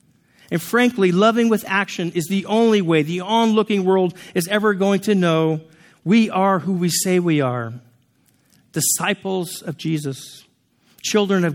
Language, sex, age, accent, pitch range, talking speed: English, male, 50-69, American, 145-190 Hz, 150 wpm